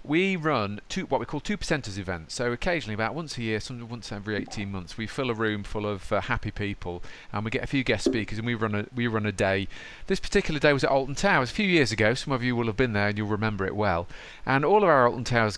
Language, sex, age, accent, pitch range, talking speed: English, male, 40-59, British, 105-145 Hz, 280 wpm